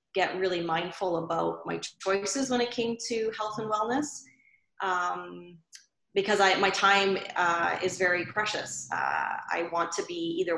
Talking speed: 160 wpm